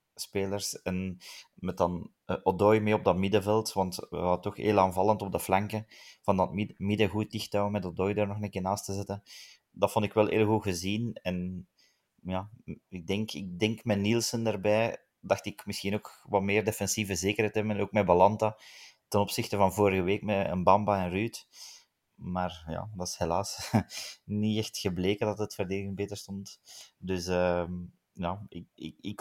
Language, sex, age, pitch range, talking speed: Dutch, male, 20-39, 95-105 Hz, 180 wpm